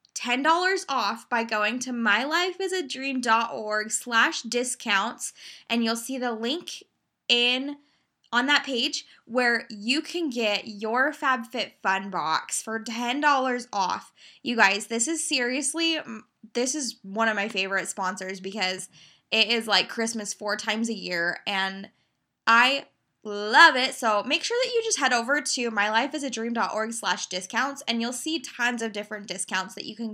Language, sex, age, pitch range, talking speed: English, female, 10-29, 210-285 Hz, 145 wpm